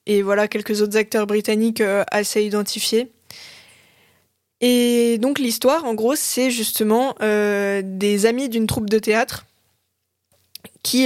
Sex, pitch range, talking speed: female, 210-240 Hz, 130 wpm